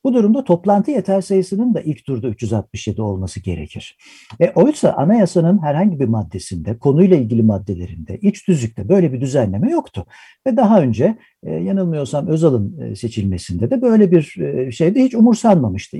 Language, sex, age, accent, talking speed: Turkish, male, 60-79, native, 140 wpm